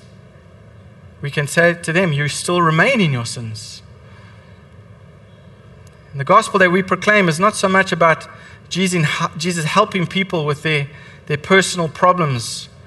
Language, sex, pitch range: English, male, 130-180 Hz